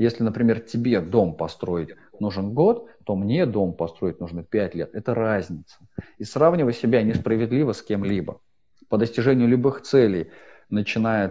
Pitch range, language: 95-120 Hz, Russian